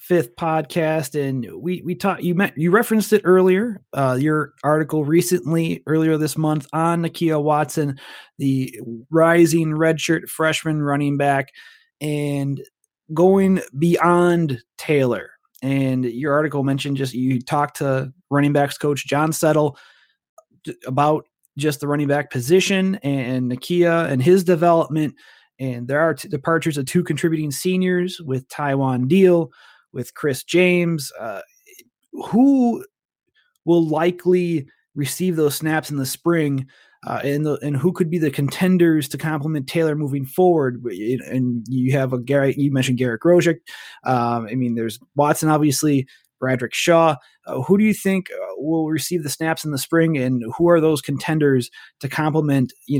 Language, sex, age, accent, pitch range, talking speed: English, male, 30-49, American, 135-170 Hz, 150 wpm